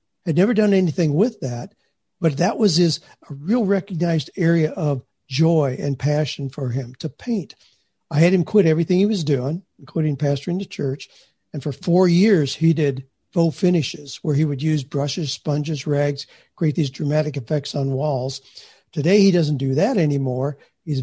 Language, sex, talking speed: English, male, 175 wpm